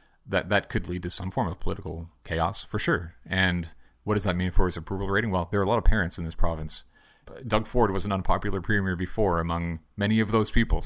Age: 40-59